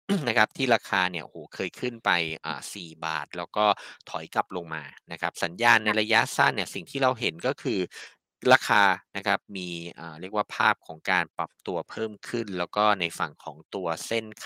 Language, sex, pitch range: Thai, male, 90-125 Hz